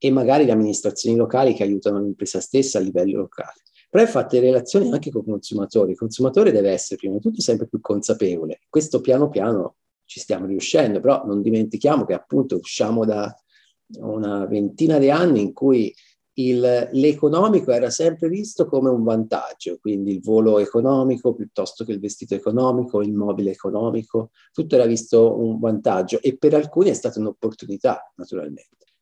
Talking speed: 170 wpm